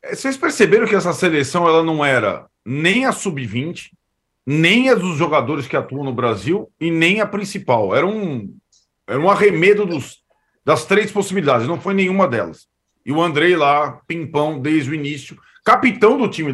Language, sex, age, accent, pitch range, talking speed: Portuguese, male, 40-59, Brazilian, 155-210 Hz, 160 wpm